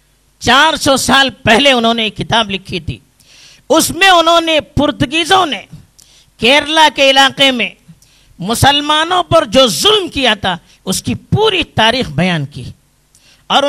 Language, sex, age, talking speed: Urdu, female, 50-69, 145 wpm